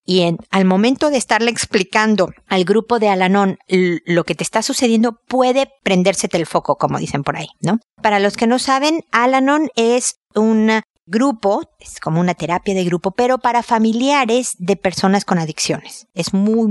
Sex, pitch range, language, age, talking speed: female, 180-235 Hz, Spanish, 50-69, 180 wpm